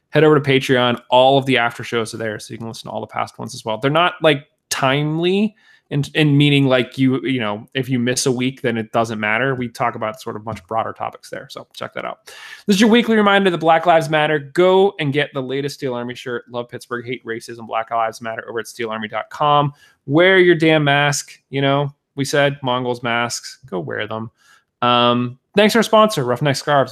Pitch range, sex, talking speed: 120-150 Hz, male, 225 wpm